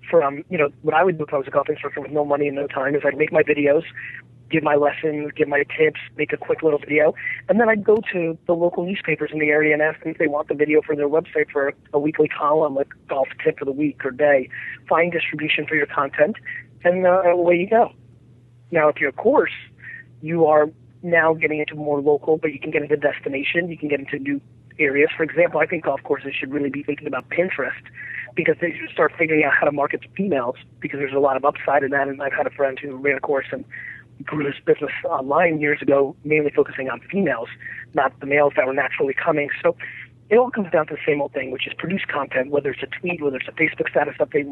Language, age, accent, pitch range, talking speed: English, 30-49, American, 140-165 Hz, 250 wpm